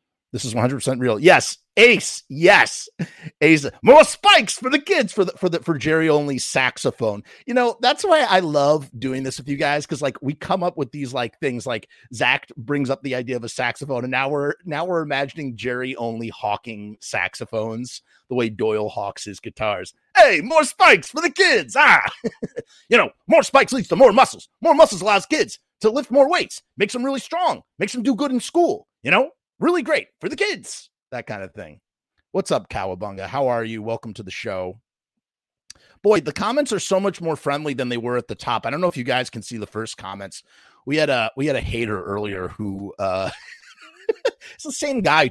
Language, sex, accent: English, male, American